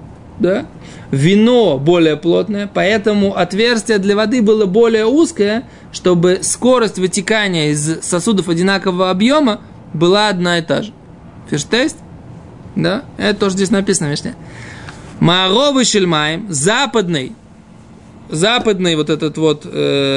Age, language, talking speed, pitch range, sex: 20-39, Russian, 105 wpm, 160-220 Hz, male